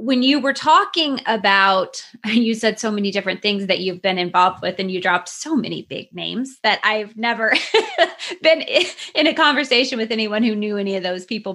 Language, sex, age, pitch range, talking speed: English, female, 20-39, 190-240 Hz, 195 wpm